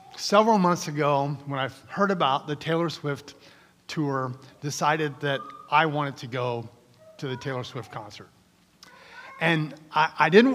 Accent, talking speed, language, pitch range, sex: American, 150 wpm, English, 145-195 Hz, male